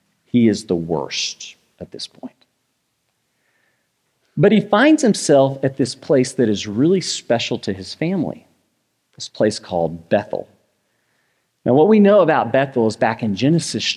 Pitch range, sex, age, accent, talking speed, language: 115-165 Hz, male, 40-59, American, 150 wpm, English